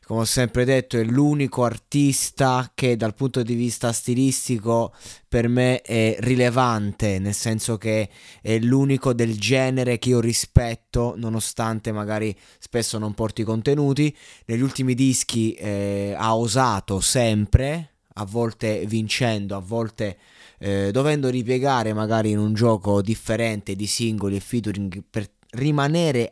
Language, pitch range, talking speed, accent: Italian, 110-125 Hz, 135 wpm, native